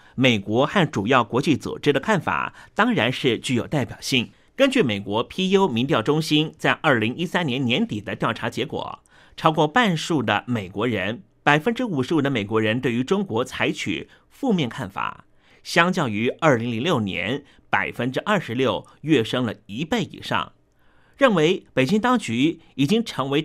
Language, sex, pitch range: Chinese, male, 115-195 Hz